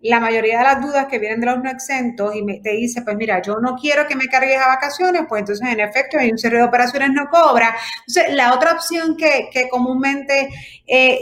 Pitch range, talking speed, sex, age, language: 215-265 Hz, 230 wpm, female, 30-49, Spanish